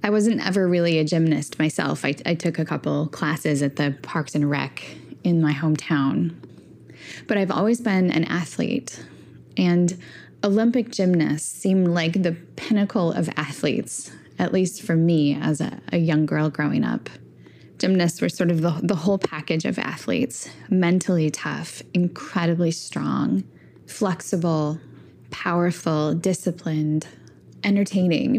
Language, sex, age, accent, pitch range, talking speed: English, female, 10-29, American, 160-200 Hz, 135 wpm